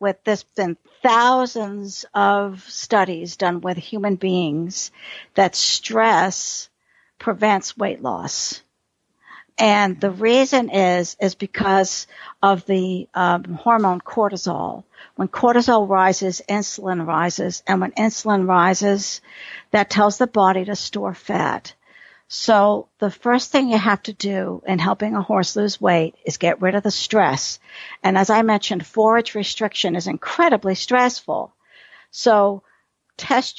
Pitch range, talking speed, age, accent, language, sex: 190-220 Hz, 130 wpm, 60-79, American, English, female